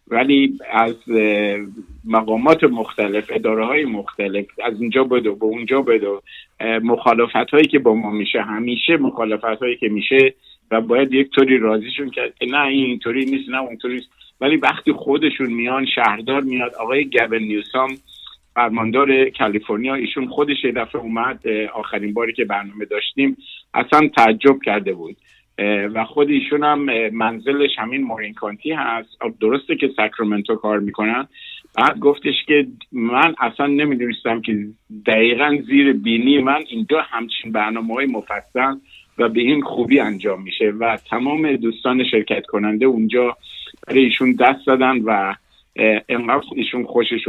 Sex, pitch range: male, 110-135 Hz